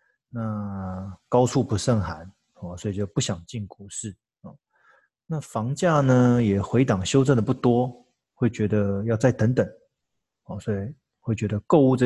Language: Chinese